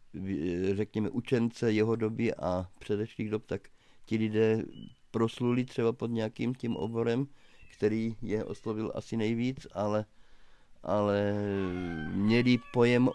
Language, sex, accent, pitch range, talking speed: Czech, male, native, 95-110 Hz, 115 wpm